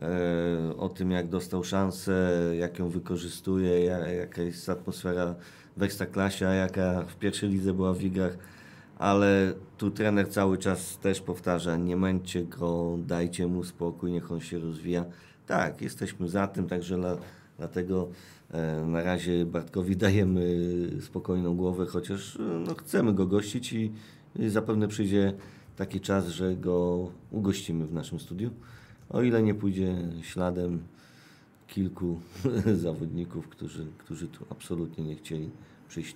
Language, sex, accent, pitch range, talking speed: Polish, male, native, 85-100 Hz, 135 wpm